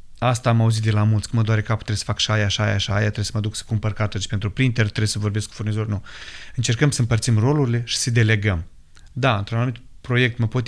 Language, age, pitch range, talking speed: Romanian, 30-49, 110-130 Hz, 265 wpm